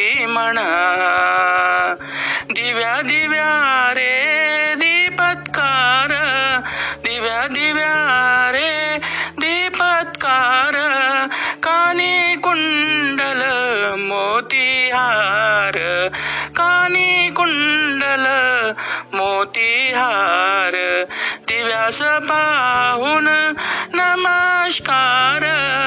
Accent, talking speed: native, 45 wpm